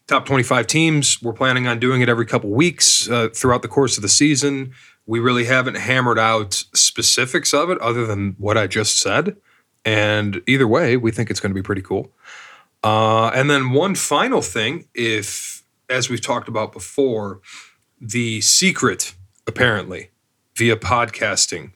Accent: American